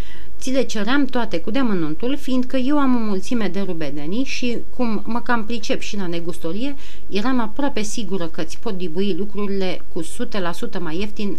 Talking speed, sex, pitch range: 175 wpm, female, 170-240 Hz